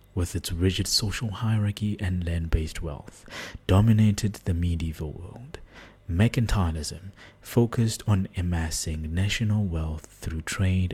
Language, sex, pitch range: English, male, 85-110 Hz